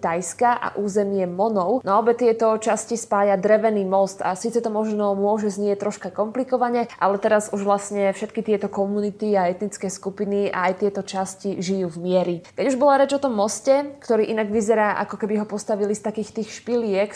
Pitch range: 195-225 Hz